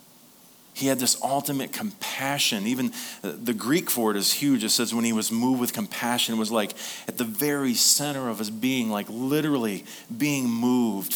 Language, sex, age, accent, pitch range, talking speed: English, male, 40-59, American, 110-145 Hz, 185 wpm